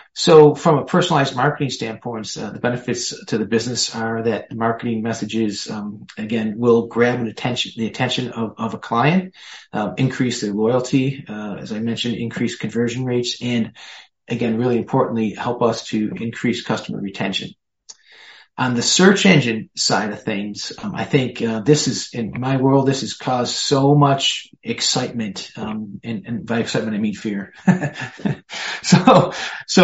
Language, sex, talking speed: English, male, 160 wpm